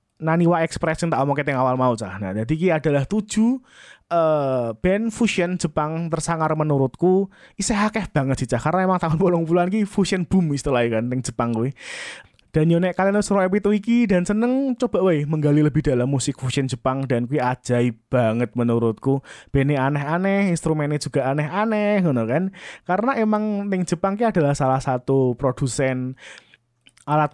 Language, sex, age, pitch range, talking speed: Indonesian, male, 20-39, 130-180 Hz, 175 wpm